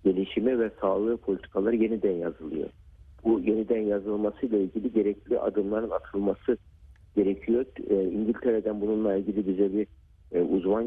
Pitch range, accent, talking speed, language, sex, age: 95-115 Hz, native, 110 wpm, Turkish, male, 60-79